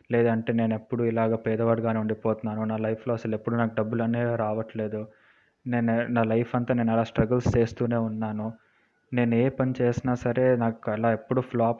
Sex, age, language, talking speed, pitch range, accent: male, 20-39, Telugu, 165 wpm, 115-130 Hz, native